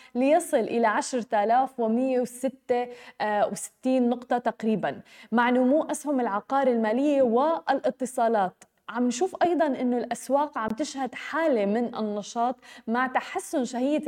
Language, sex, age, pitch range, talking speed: Arabic, female, 20-39, 230-270 Hz, 100 wpm